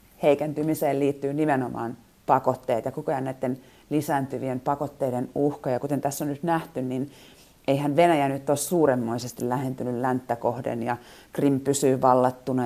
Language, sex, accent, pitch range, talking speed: Finnish, female, native, 125-155 Hz, 140 wpm